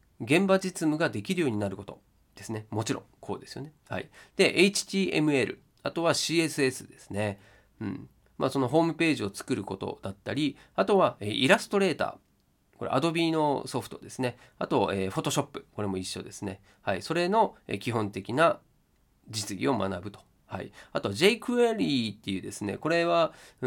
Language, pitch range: Japanese, 100-170 Hz